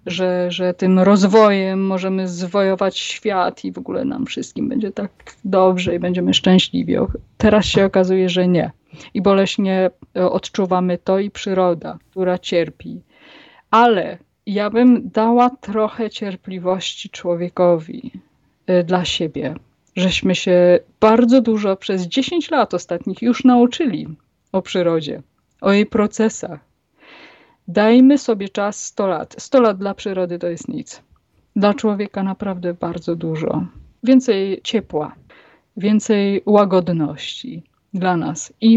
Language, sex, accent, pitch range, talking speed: Polish, female, native, 180-210 Hz, 120 wpm